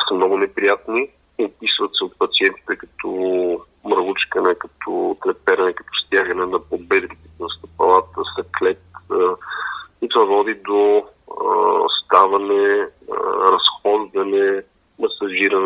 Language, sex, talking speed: Bulgarian, male, 95 wpm